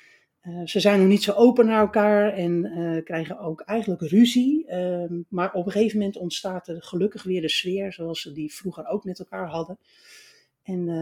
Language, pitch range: Dutch, 160-200 Hz